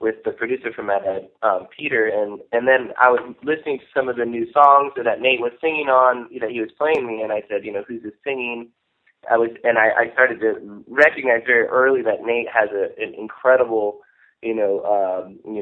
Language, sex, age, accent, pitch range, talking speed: English, male, 20-39, American, 115-160 Hz, 225 wpm